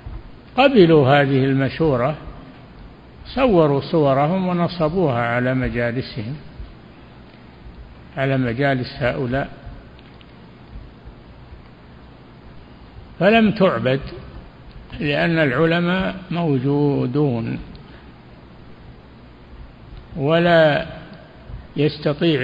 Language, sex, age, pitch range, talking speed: Arabic, male, 60-79, 110-155 Hz, 50 wpm